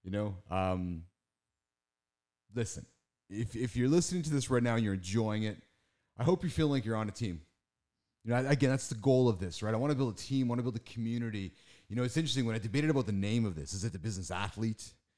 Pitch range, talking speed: 90-120 Hz, 255 wpm